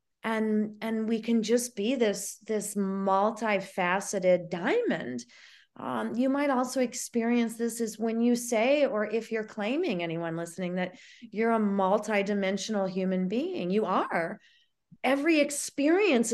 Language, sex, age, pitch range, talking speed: English, female, 30-49, 200-280 Hz, 130 wpm